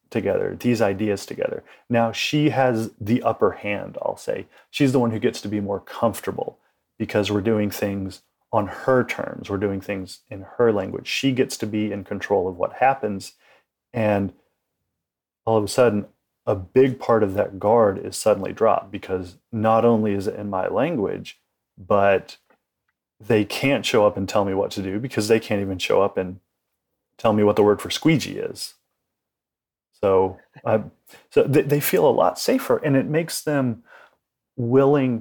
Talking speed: 175 wpm